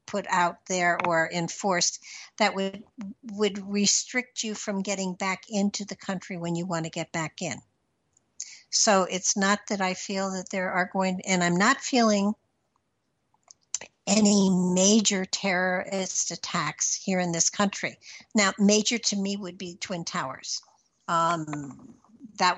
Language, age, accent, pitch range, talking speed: English, 60-79, American, 175-205 Hz, 145 wpm